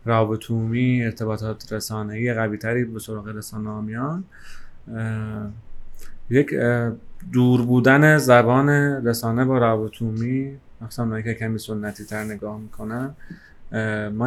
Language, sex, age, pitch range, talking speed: Persian, male, 30-49, 110-130 Hz, 100 wpm